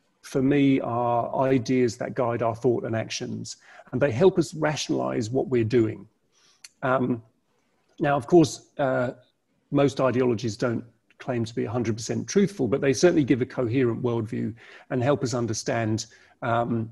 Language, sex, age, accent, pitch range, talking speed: English, male, 40-59, British, 120-150 Hz, 155 wpm